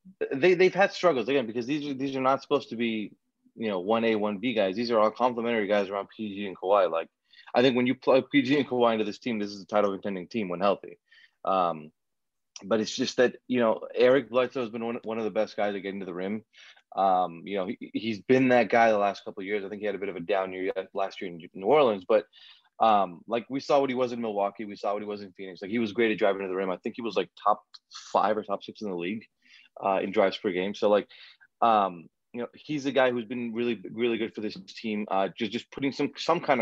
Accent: American